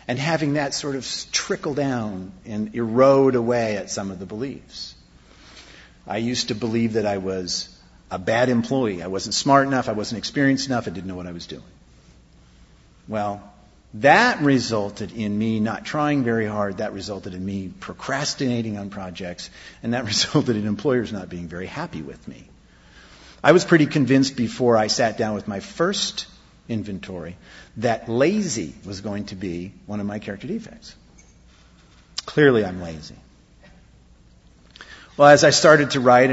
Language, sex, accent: English, male, American